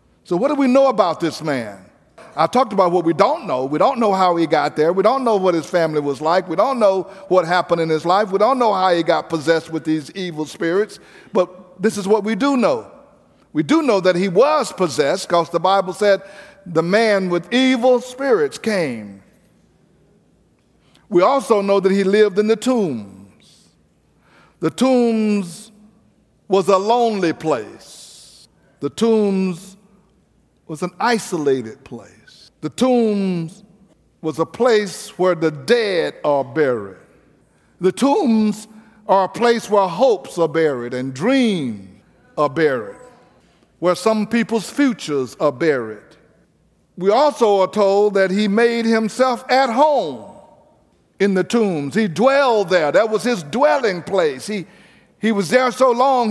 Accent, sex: American, male